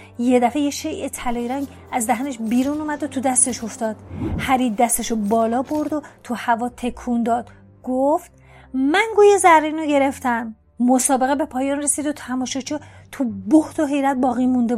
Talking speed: 160 wpm